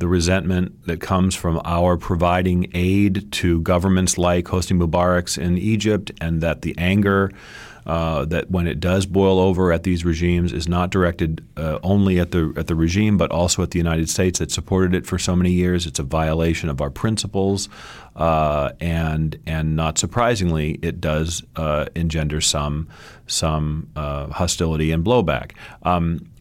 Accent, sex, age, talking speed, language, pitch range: American, male, 40-59, 170 wpm, English, 80-95 Hz